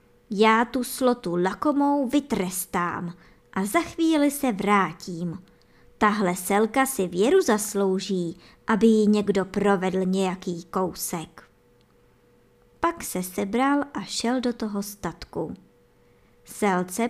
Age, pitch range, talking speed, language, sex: 20-39, 185-260 Hz, 105 wpm, Czech, male